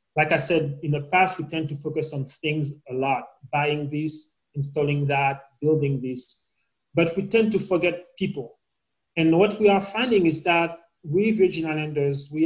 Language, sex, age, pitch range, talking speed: English, male, 30-49, 140-165 Hz, 180 wpm